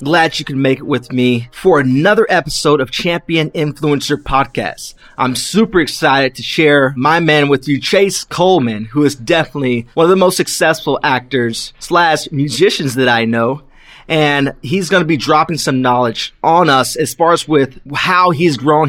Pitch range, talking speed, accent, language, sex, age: 135-170 Hz, 180 wpm, American, English, male, 30-49